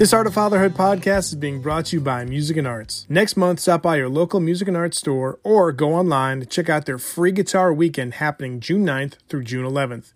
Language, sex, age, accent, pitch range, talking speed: English, male, 30-49, American, 135-175 Hz, 235 wpm